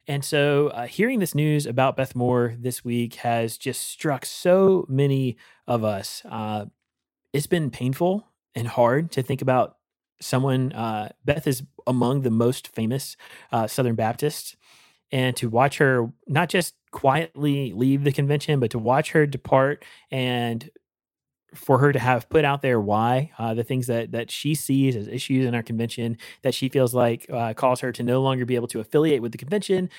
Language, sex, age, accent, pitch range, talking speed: English, male, 30-49, American, 115-140 Hz, 180 wpm